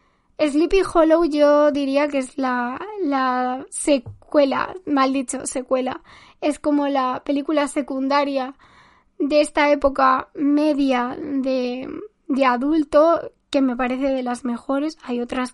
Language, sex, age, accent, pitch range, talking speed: Spanish, female, 10-29, Spanish, 260-300 Hz, 125 wpm